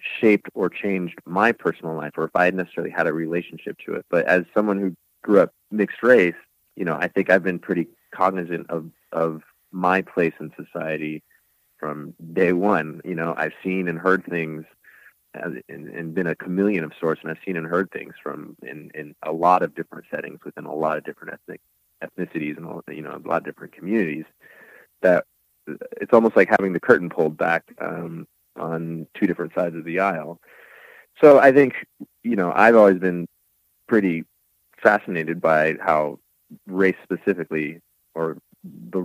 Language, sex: English, male